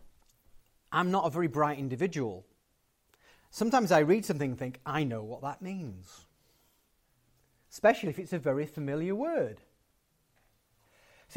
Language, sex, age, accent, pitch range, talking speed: Dutch, male, 40-59, British, 130-195 Hz, 130 wpm